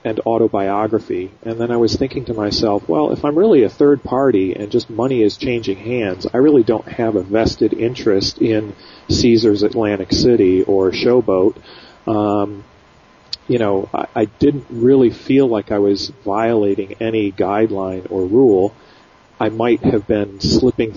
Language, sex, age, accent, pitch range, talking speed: English, male, 40-59, American, 100-115 Hz, 160 wpm